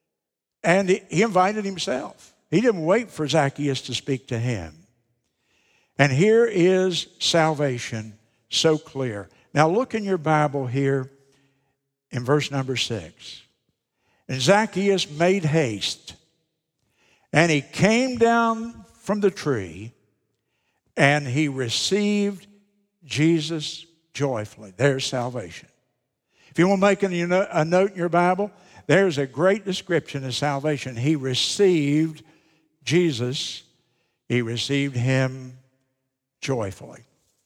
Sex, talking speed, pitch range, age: male, 110 wpm, 130-170 Hz, 60-79